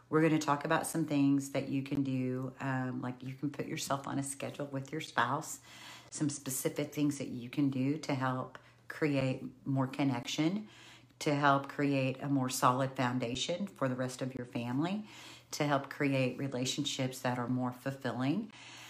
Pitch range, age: 135-160 Hz, 50-69